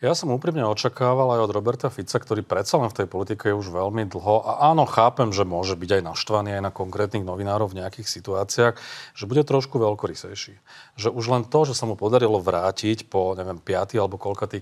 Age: 40-59